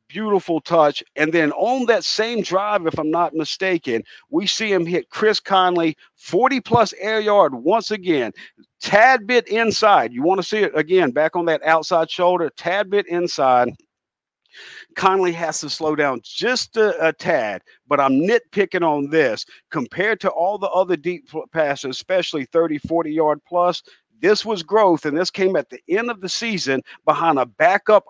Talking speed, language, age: 175 wpm, English, 50-69